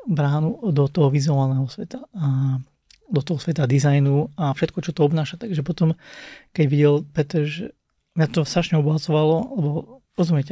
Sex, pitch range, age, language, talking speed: male, 145-175 Hz, 30-49, Slovak, 155 wpm